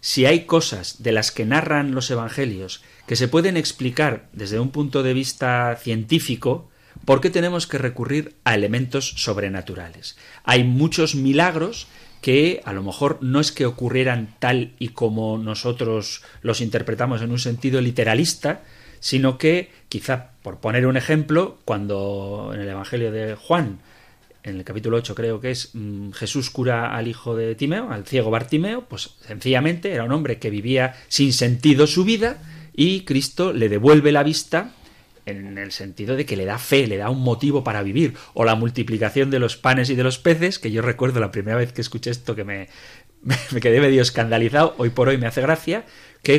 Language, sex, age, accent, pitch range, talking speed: Spanish, male, 40-59, Spanish, 115-145 Hz, 180 wpm